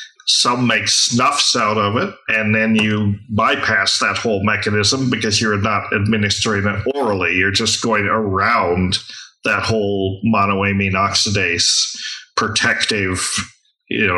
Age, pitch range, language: 40-59, 100-115 Hz, English